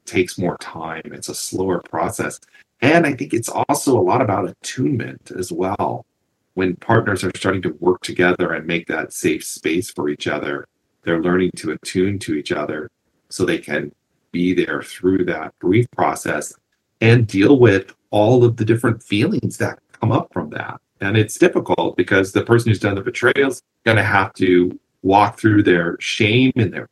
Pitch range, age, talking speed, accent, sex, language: 90-115 Hz, 40-59, 185 wpm, American, male, English